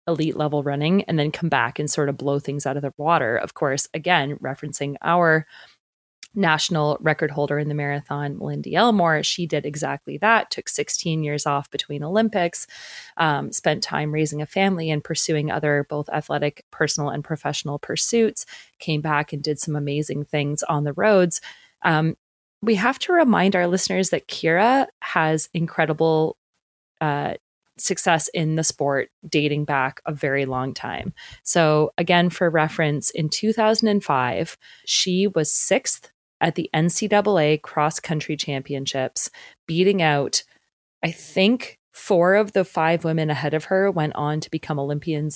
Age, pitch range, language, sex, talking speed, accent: 20-39, 145-175 Hz, English, female, 155 wpm, American